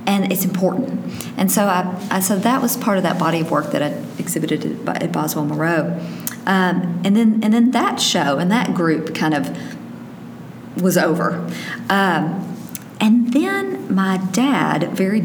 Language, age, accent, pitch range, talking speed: English, 40-59, American, 165-200 Hz, 170 wpm